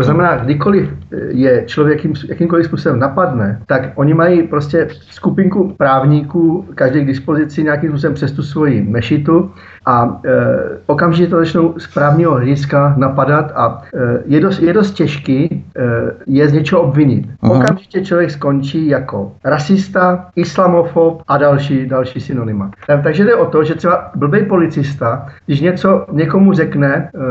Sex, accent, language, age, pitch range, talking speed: male, native, Czech, 50-69, 140-165 Hz, 145 wpm